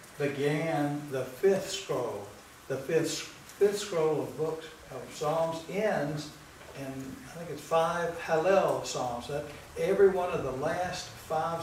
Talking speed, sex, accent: 140 wpm, male, American